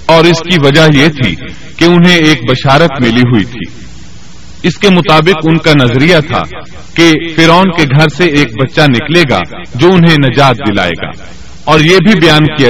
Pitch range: 135-170 Hz